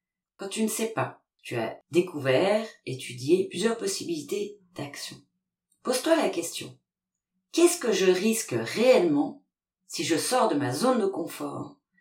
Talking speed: 140 wpm